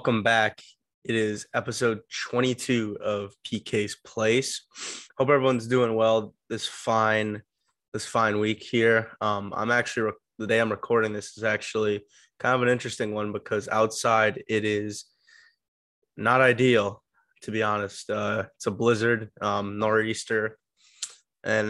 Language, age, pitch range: English, 20-39, 105-115 Hz